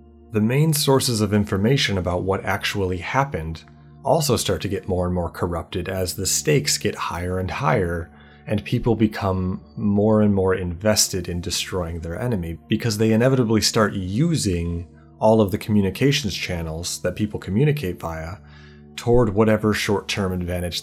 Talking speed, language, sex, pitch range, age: 155 wpm, English, male, 90-110 Hz, 30-49